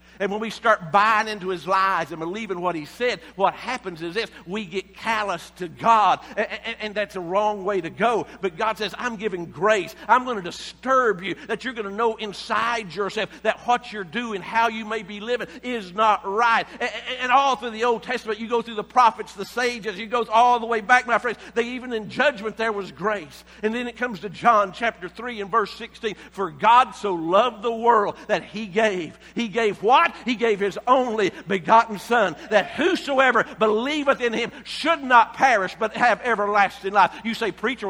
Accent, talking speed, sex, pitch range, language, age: American, 210 wpm, male, 210-250 Hz, English, 50-69